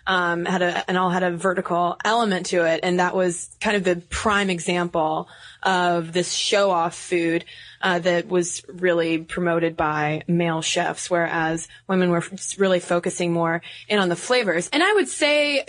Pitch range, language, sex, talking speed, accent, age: 175-205 Hz, English, female, 180 wpm, American, 20-39